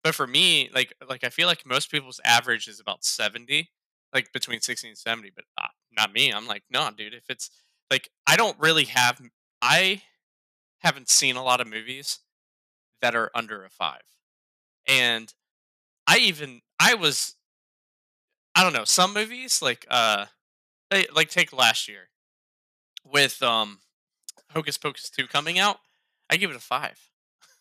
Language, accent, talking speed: English, American, 160 wpm